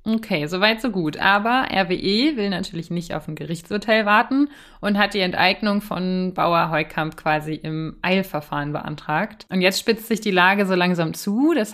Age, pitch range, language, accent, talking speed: 20-39, 170-205 Hz, German, German, 175 wpm